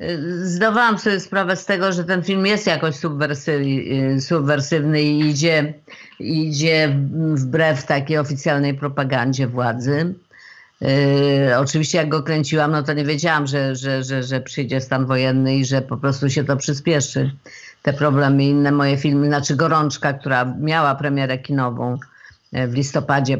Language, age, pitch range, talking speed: Polish, 50-69, 135-165 Hz, 140 wpm